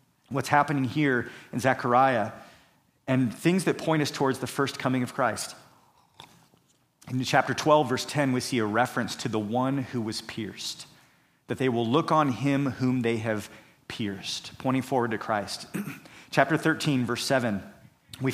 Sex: male